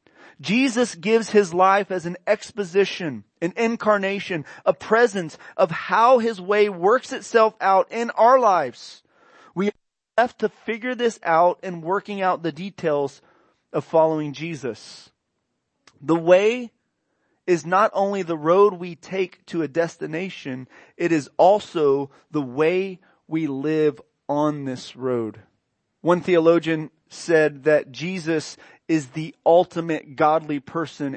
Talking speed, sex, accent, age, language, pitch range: 130 wpm, male, American, 30-49, English, 155-205 Hz